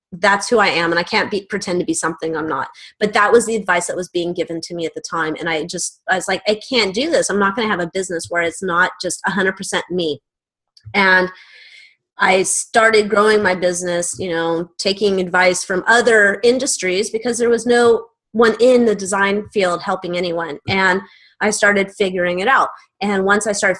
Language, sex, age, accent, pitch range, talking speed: English, female, 30-49, American, 175-215 Hz, 215 wpm